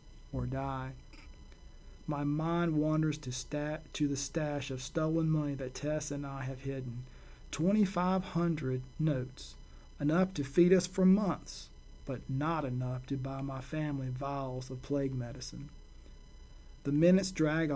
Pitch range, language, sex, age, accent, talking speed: 130-155 Hz, English, male, 40-59, American, 140 wpm